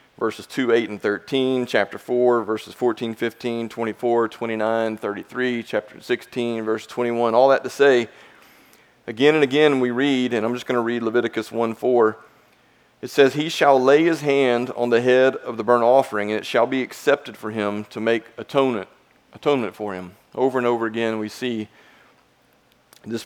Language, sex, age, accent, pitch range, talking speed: English, male, 30-49, American, 110-130 Hz, 180 wpm